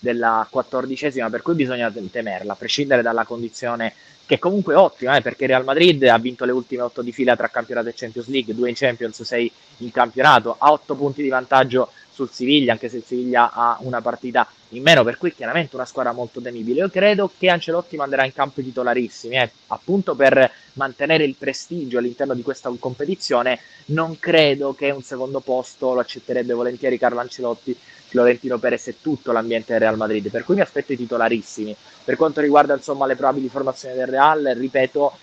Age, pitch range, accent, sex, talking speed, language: 20-39, 120-140 Hz, native, male, 190 wpm, Italian